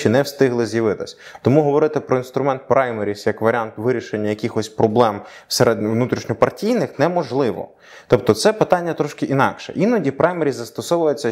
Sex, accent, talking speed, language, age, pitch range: male, native, 135 wpm, Ukrainian, 20-39, 105-130 Hz